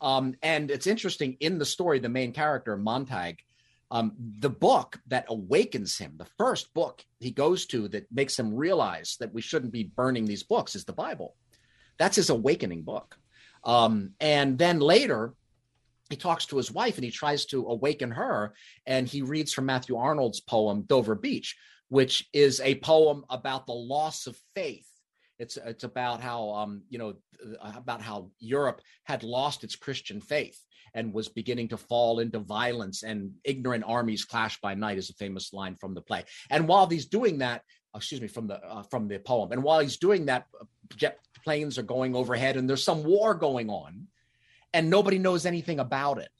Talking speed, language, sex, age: 185 wpm, English, male, 40-59